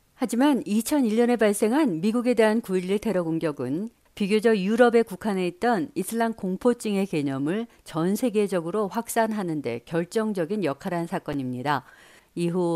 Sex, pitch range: female, 170-225 Hz